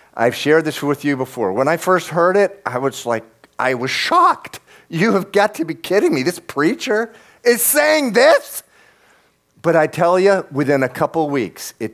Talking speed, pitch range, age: 190 wpm, 135-200 Hz, 50-69